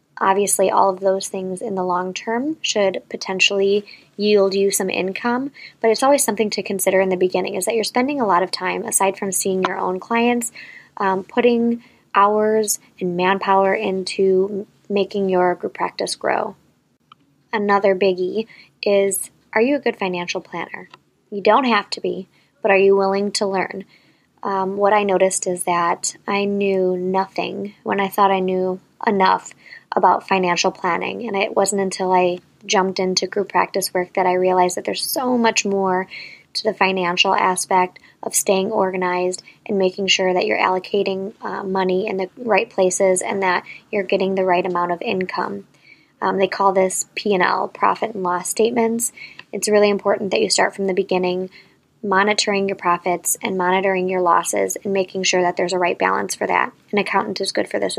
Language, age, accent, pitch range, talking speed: English, 10-29, American, 185-205 Hz, 180 wpm